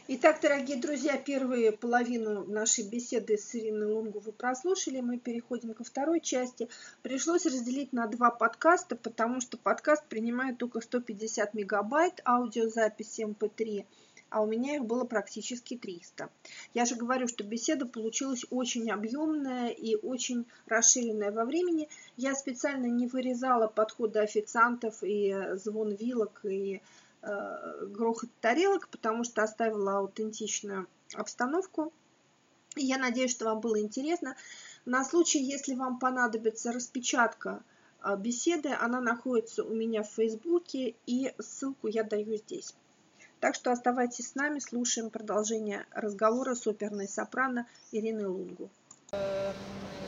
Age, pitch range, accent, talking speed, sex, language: 40-59, 220-260 Hz, native, 125 wpm, female, Russian